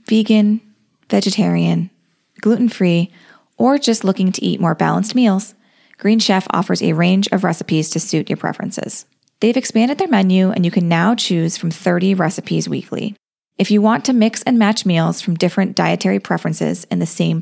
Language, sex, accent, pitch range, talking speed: English, female, American, 170-215 Hz, 170 wpm